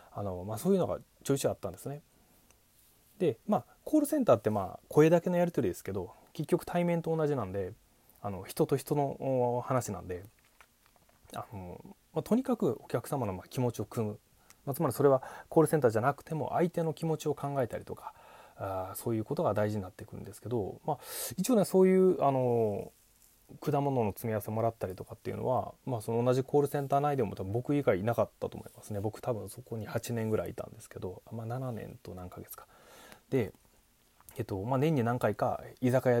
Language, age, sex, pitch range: Japanese, 20-39, male, 110-145 Hz